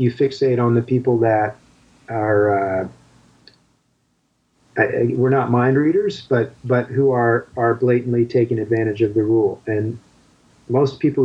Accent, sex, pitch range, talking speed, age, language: American, male, 110-125 Hz, 150 wpm, 40-59, English